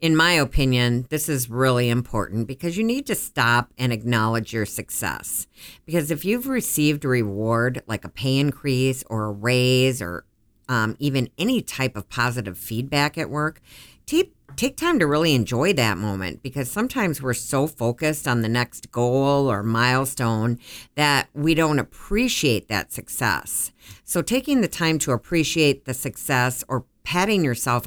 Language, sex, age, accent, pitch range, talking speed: English, female, 50-69, American, 120-155 Hz, 160 wpm